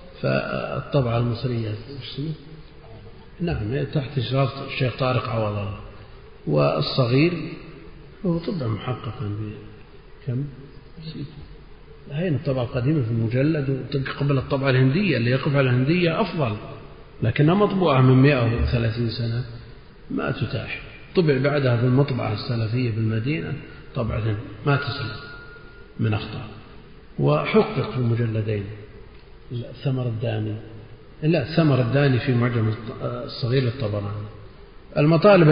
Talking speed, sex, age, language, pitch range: 100 wpm, male, 50-69, Arabic, 115-145 Hz